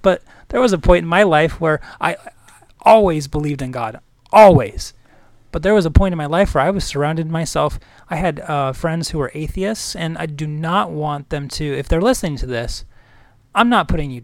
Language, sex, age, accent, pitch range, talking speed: English, male, 30-49, American, 125-165 Hz, 220 wpm